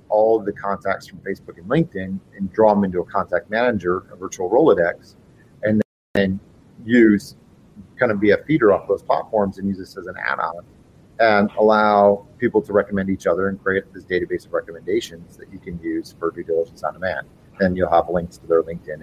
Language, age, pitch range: English, 40-59, 95-150 Hz